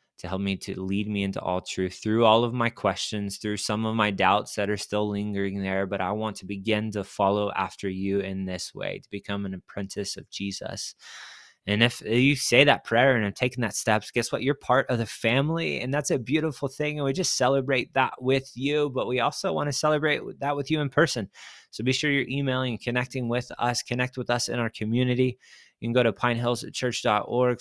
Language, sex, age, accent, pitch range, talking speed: English, male, 20-39, American, 100-125 Hz, 225 wpm